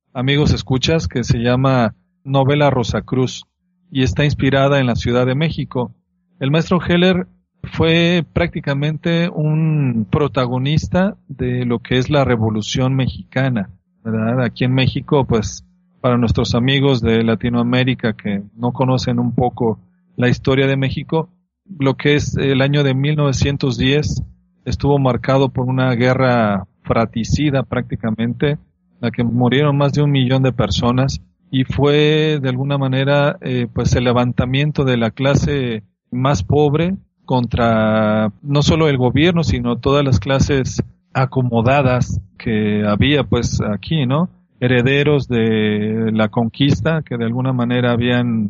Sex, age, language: male, 40-59, Spanish